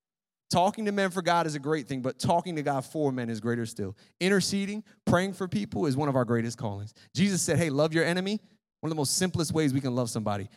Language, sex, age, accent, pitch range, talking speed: English, male, 30-49, American, 125-180 Hz, 250 wpm